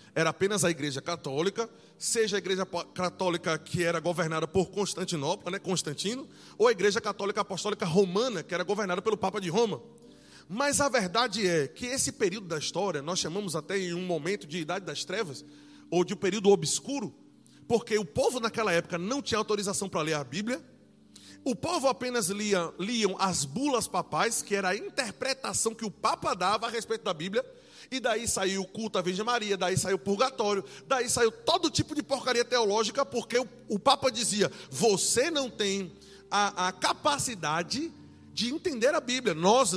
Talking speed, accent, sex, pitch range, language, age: 180 wpm, Brazilian, male, 190-265 Hz, Portuguese, 20-39